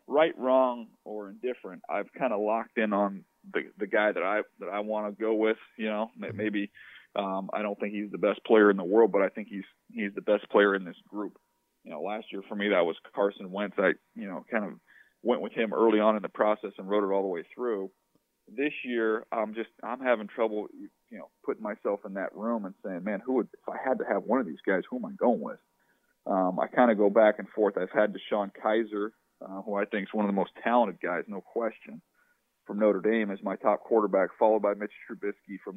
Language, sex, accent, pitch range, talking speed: English, male, American, 100-115 Hz, 245 wpm